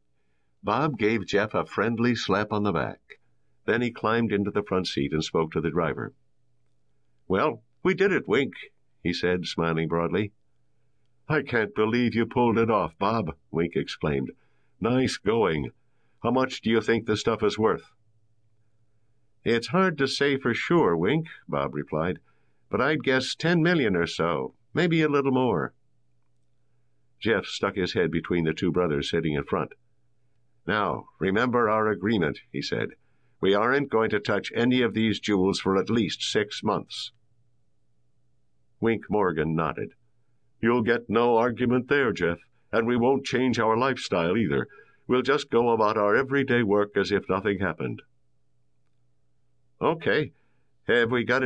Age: 60-79